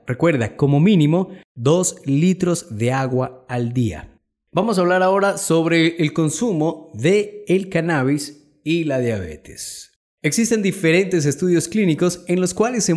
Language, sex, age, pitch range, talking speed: Spanish, male, 30-49, 140-185 Hz, 140 wpm